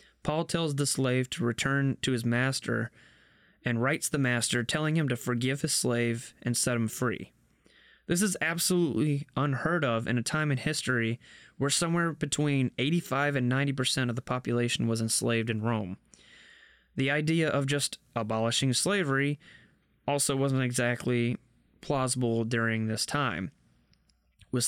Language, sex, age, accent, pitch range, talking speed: English, male, 20-39, American, 120-145 Hz, 150 wpm